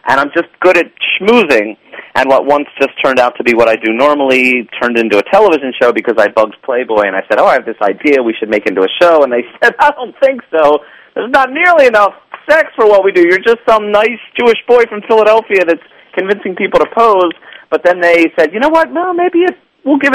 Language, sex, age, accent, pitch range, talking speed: English, male, 40-59, American, 130-200 Hz, 240 wpm